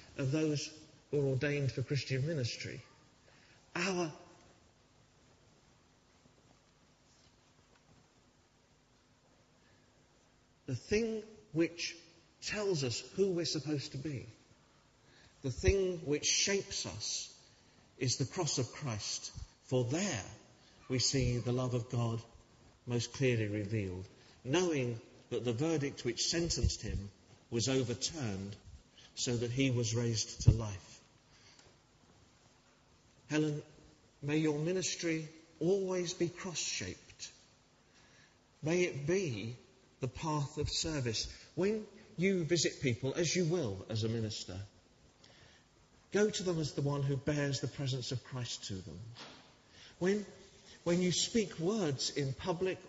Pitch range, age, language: 120-165 Hz, 50-69, English